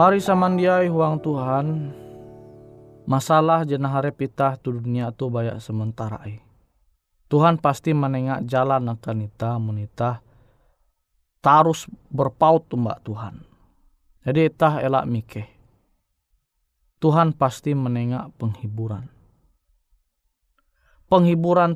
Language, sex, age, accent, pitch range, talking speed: Indonesian, male, 20-39, native, 110-145 Hz, 95 wpm